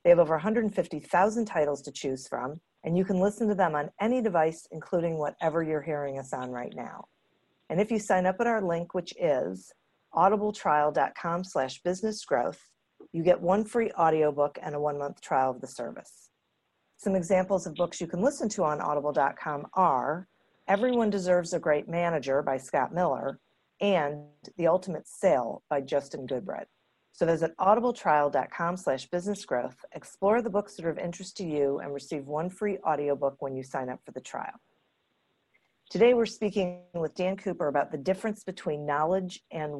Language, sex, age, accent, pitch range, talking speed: English, female, 40-59, American, 150-195 Hz, 170 wpm